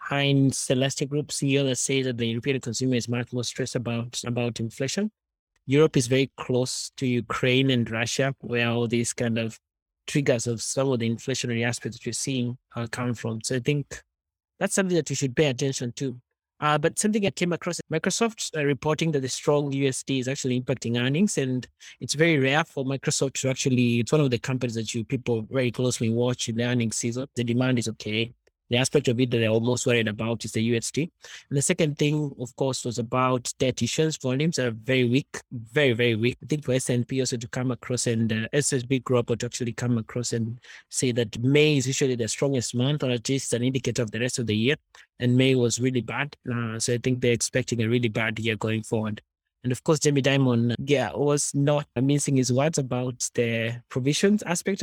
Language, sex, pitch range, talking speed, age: English, male, 120-140 Hz, 215 wpm, 20-39